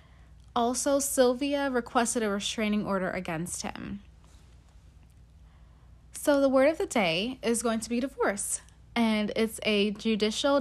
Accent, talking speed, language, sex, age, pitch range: American, 130 wpm, English, female, 20-39, 195-245 Hz